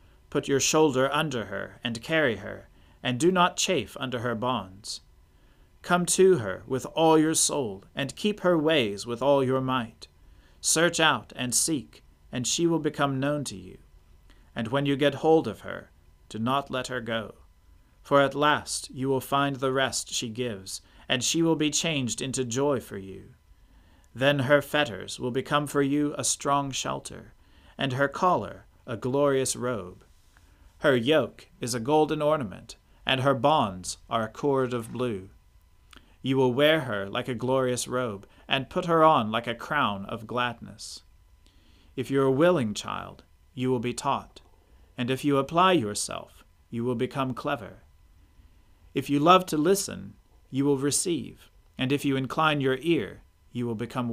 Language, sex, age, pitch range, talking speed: English, male, 40-59, 100-140 Hz, 170 wpm